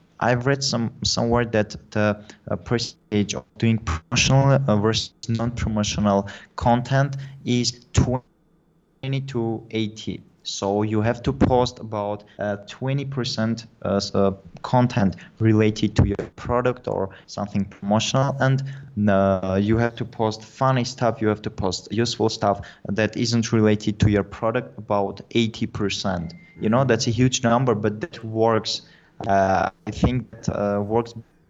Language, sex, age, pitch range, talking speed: English, male, 20-39, 100-120 Hz, 135 wpm